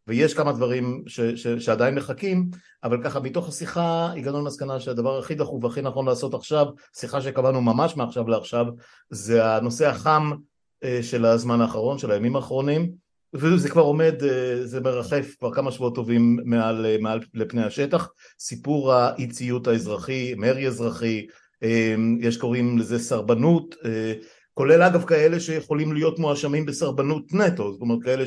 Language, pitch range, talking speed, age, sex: Hebrew, 120-155 Hz, 145 wpm, 50-69, male